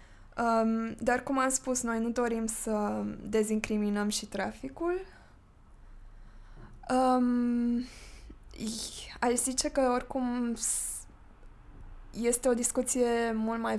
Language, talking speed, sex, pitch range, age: Romanian, 95 wpm, female, 200-225 Hz, 20-39